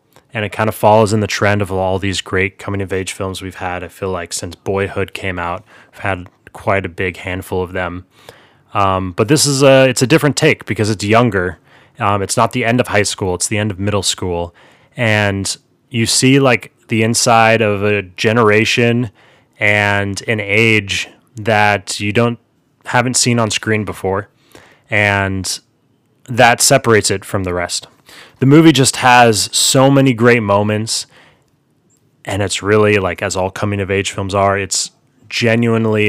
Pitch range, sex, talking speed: 100-120 Hz, male, 180 wpm